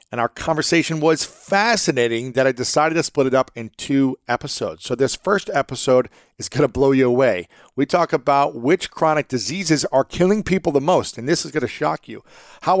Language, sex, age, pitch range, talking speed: English, male, 40-59, 120-160 Hz, 205 wpm